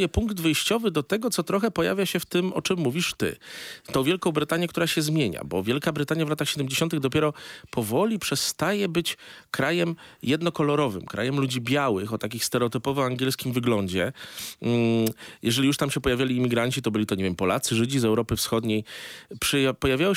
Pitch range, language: 115-150 Hz, Polish